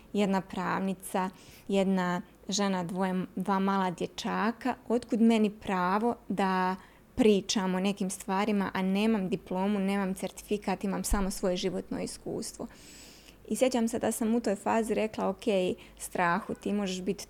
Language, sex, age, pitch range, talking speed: Croatian, female, 20-39, 190-220 Hz, 140 wpm